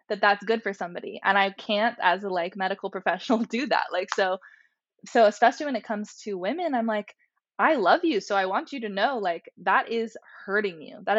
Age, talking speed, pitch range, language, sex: 20-39, 220 wpm, 185-230 Hz, English, female